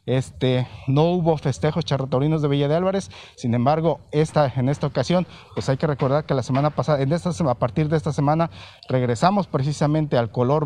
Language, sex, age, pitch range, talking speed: Spanish, male, 40-59, 125-160 Hz, 195 wpm